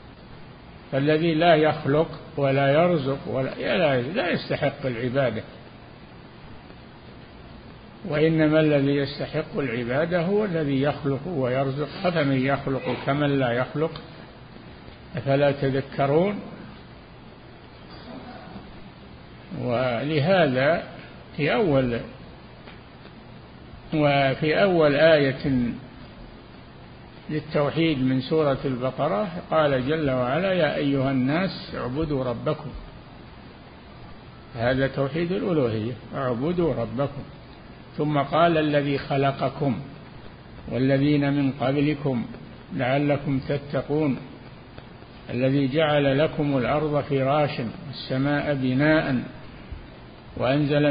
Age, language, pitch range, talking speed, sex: 50-69, Arabic, 135-155 Hz, 75 wpm, male